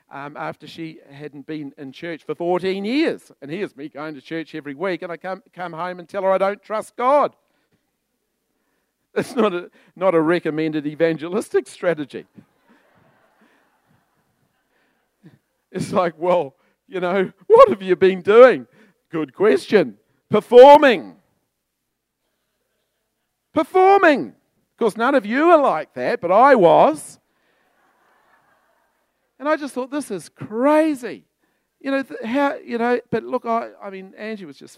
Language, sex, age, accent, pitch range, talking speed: English, male, 50-69, British, 150-210 Hz, 145 wpm